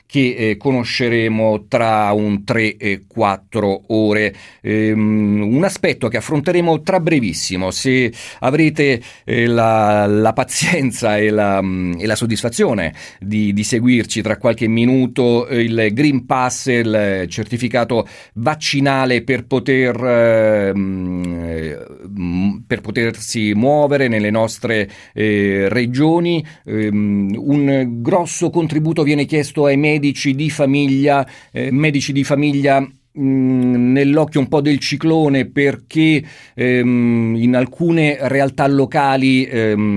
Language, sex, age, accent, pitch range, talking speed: Italian, male, 40-59, native, 110-140 Hz, 115 wpm